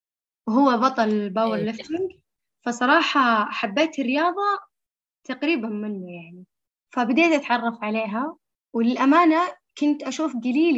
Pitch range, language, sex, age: 215-275 Hz, Arabic, female, 10-29